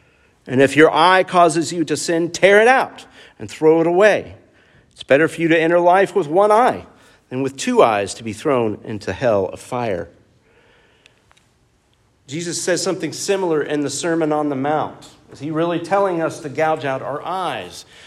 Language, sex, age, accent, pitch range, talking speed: English, male, 50-69, American, 140-175 Hz, 185 wpm